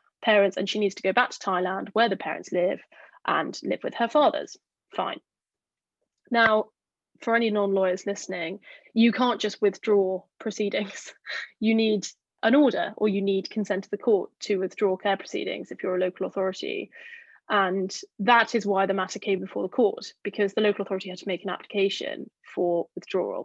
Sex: female